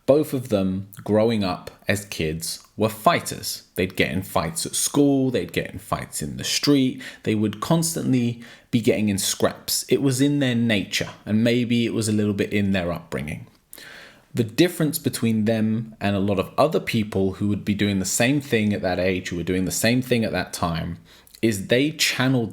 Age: 20-39